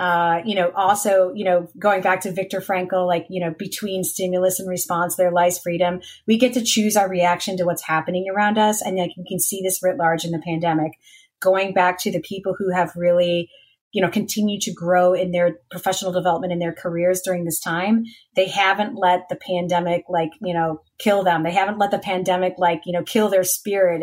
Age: 30-49